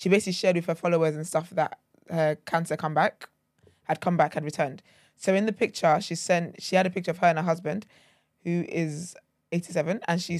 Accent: British